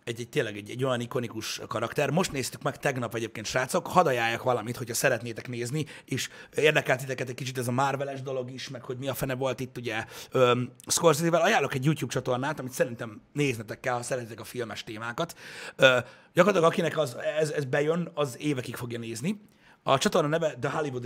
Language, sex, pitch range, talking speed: Hungarian, male, 125-170 Hz, 190 wpm